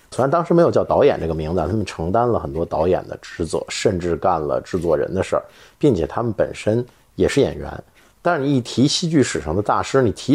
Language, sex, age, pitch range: Chinese, male, 50-69, 95-155 Hz